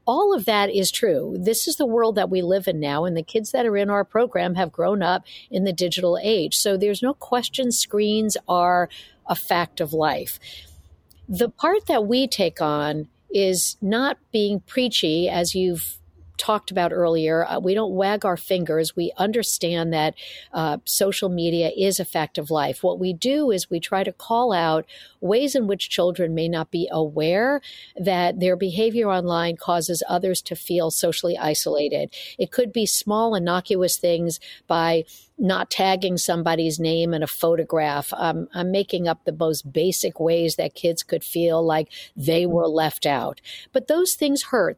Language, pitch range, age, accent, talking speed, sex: English, 165-210 Hz, 60-79, American, 175 wpm, female